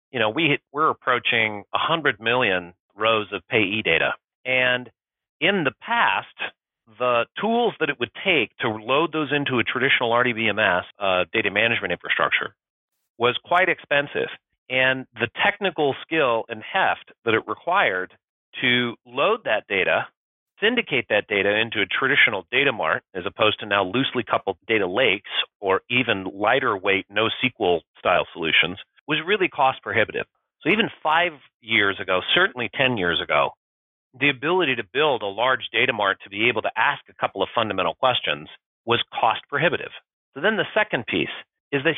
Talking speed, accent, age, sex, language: 160 wpm, American, 40-59, male, English